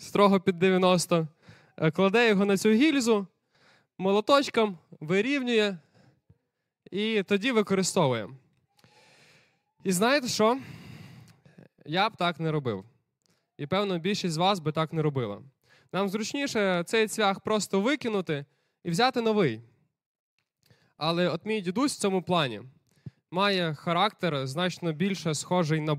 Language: Ukrainian